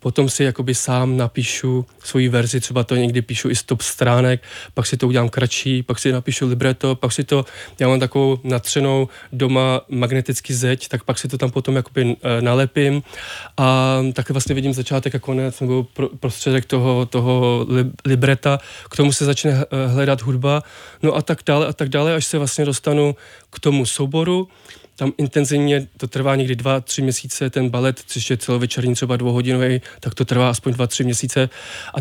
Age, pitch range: 20-39, 125-140 Hz